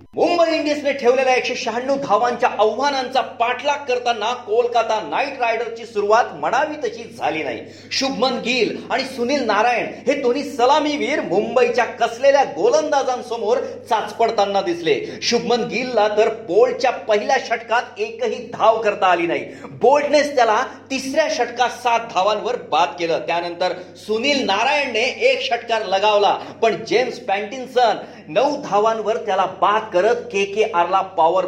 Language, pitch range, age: Marathi, 210-265 Hz, 40-59